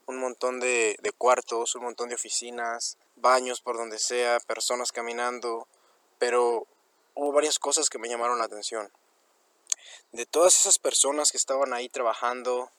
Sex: male